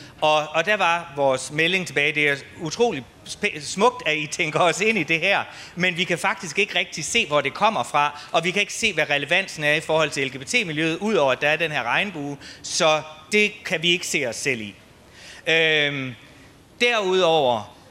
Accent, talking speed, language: native, 200 wpm, Danish